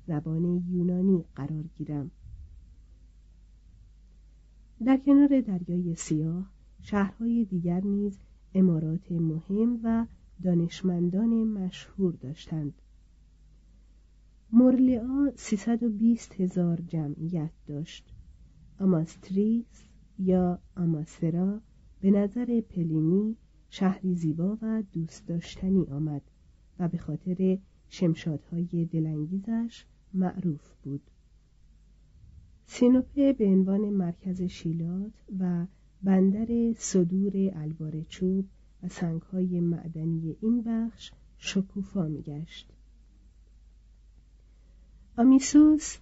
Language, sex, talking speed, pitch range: Persian, female, 80 wpm, 160-200 Hz